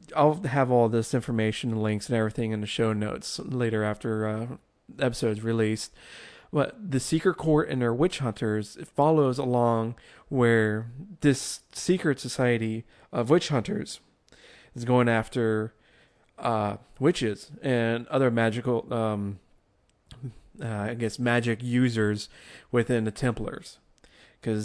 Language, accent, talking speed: English, American, 130 wpm